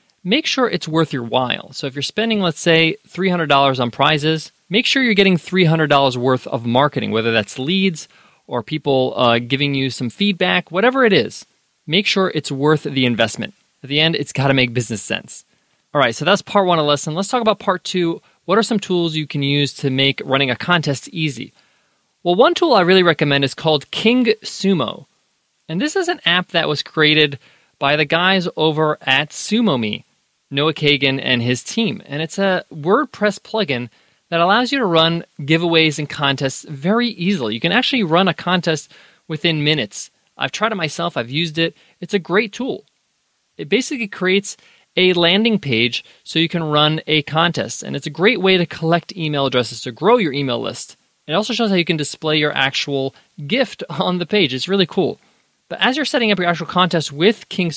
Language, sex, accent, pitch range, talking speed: English, male, American, 140-195 Hz, 200 wpm